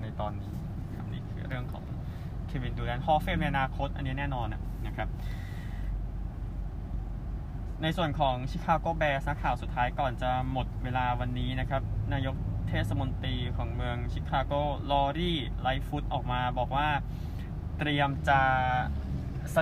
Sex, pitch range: male, 110-140 Hz